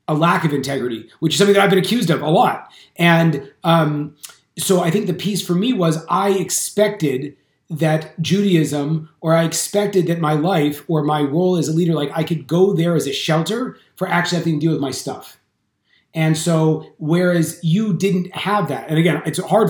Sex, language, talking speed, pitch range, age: male, English, 205 wpm, 155-180 Hz, 30-49